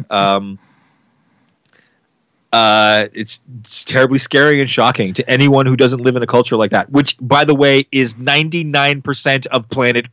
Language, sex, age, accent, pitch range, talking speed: English, male, 30-49, American, 115-140 Hz, 160 wpm